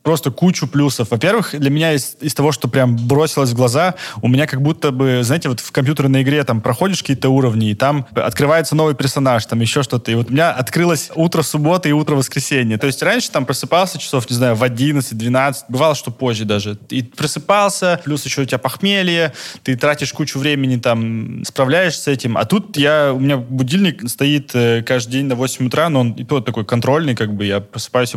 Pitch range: 120-150 Hz